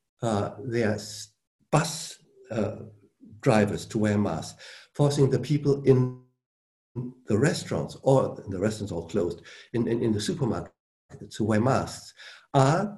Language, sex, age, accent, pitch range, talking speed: English, male, 60-79, German, 120-165 Hz, 135 wpm